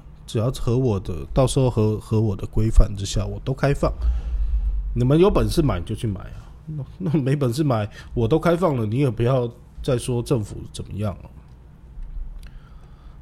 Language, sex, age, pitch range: Chinese, male, 20-39, 105-145 Hz